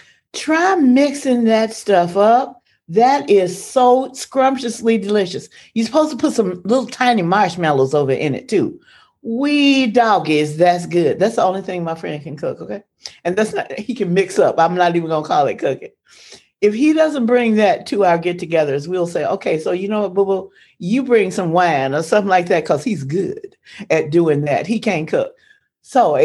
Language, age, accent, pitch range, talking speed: English, 40-59, American, 175-245 Hz, 190 wpm